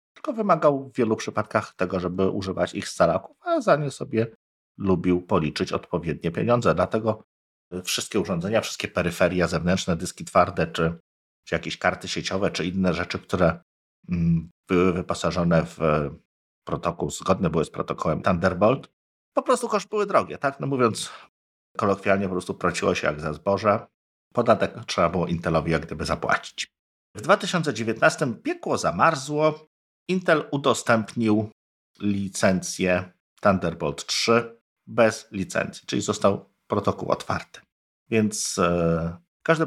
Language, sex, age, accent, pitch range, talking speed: Polish, male, 50-69, native, 90-115 Hz, 130 wpm